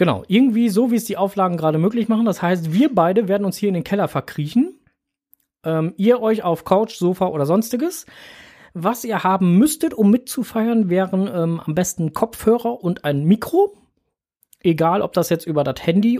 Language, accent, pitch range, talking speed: German, German, 160-215 Hz, 185 wpm